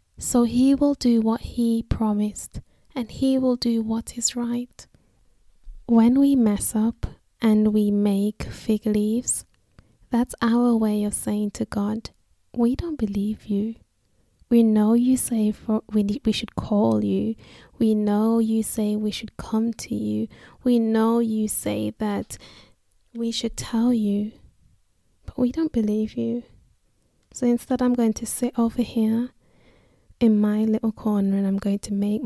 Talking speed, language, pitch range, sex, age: 155 wpm, English, 210-235 Hz, female, 10-29